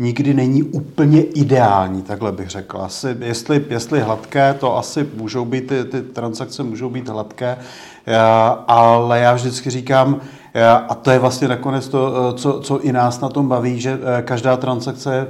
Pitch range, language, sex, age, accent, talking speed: 115-130 Hz, Czech, male, 40-59, native, 160 wpm